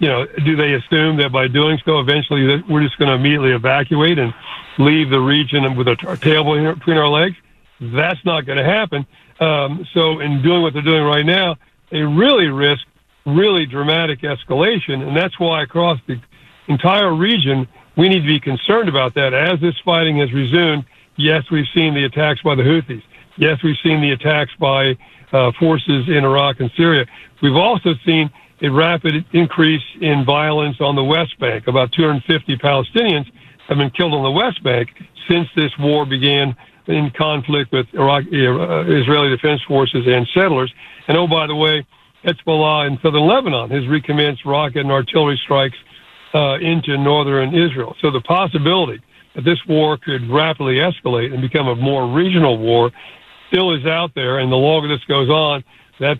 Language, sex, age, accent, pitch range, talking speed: English, male, 60-79, American, 135-160 Hz, 175 wpm